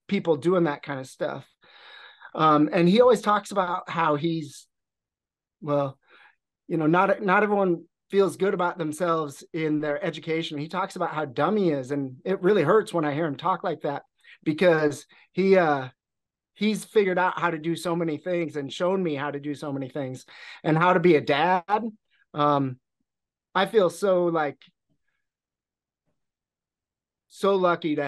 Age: 30-49